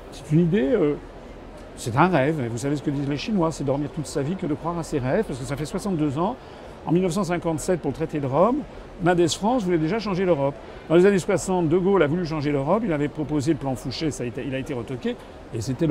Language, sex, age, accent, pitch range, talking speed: French, male, 50-69, French, 145-205 Hz, 260 wpm